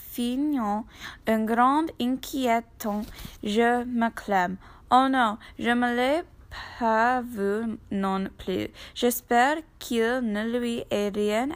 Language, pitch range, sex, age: French, 220-255 Hz, female, 10-29